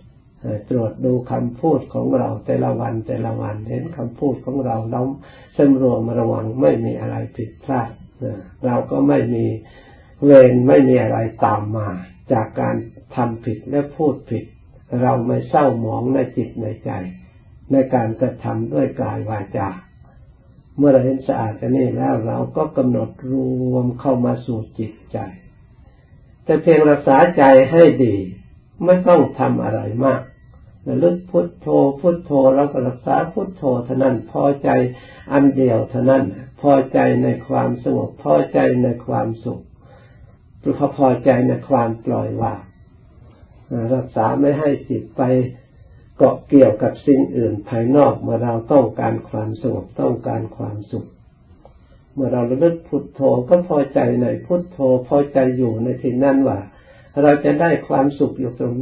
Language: Thai